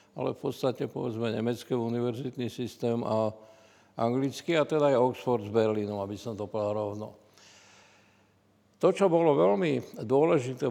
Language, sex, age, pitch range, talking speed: Slovak, male, 60-79, 115-140 Hz, 140 wpm